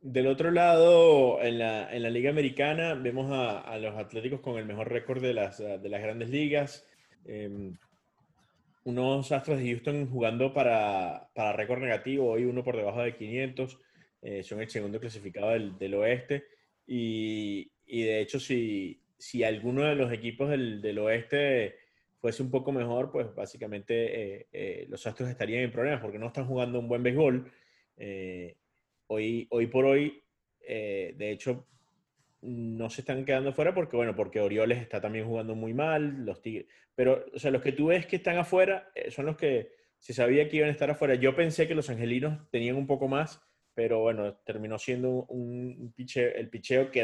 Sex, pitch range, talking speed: male, 115-145 Hz, 185 wpm